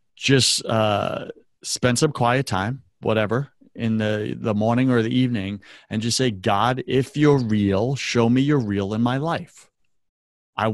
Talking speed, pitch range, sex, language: 160 wpm, 105-125 Hz, male, English